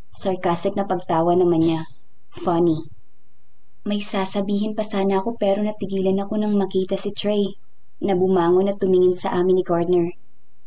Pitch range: 180-205 Hz